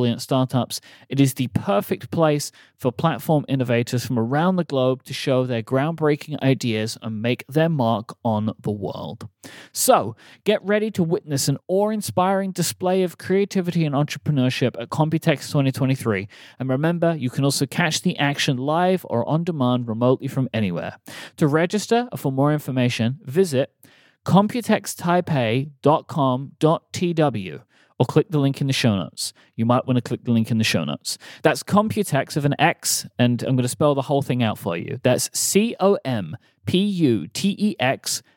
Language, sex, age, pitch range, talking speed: English, male, 30-49, 125-170 Hz, 160 wpm